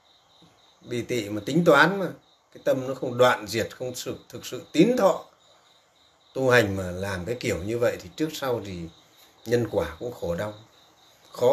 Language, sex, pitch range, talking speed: Vietnamese, male, 120-180 Hz, 180 wpm